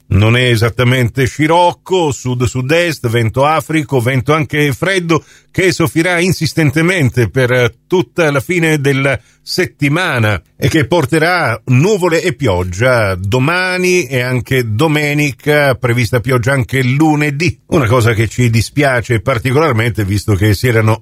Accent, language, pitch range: native, Italian, 115-150 Hz